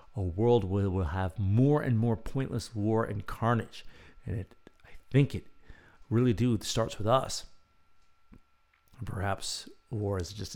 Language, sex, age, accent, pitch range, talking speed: English, male, 50-69, American, 70-115 Hz, 155 wpm